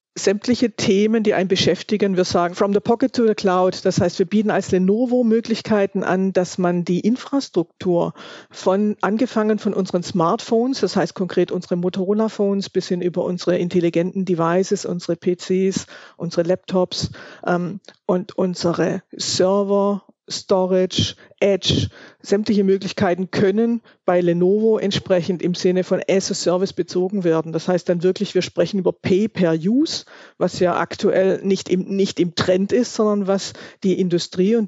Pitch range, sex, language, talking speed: 180-210 Hz, female, German, 145 wpm